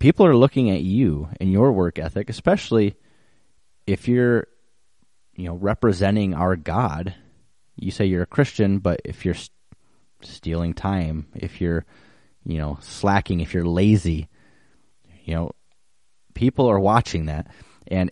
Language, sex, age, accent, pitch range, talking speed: English, male, 30-49, American, 85-110 Hz, 140 wpm